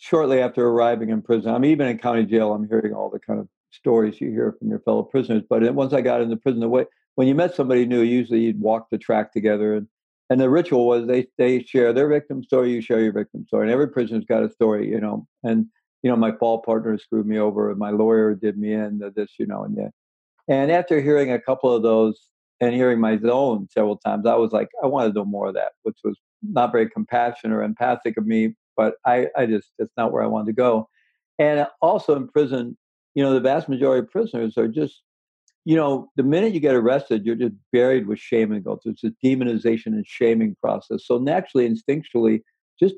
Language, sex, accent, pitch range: English, male, American, 110-130 Hz